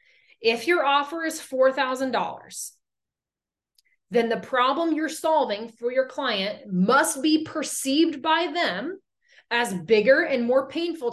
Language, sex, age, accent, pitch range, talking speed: English, female, 30-49, American, 205-290 Hz, 125 wpm